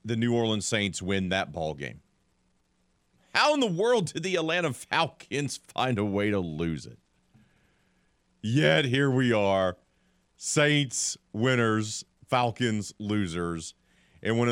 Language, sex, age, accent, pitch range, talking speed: English, male, 40-59, American, 85-130 Hz, 130 wpm